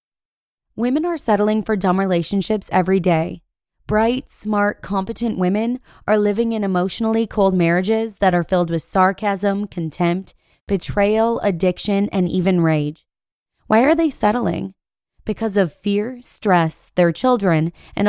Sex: female